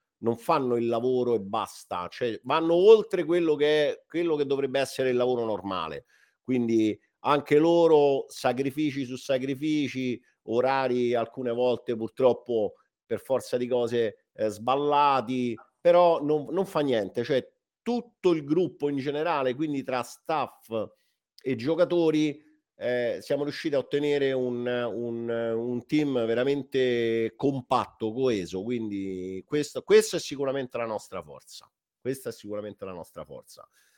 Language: Italian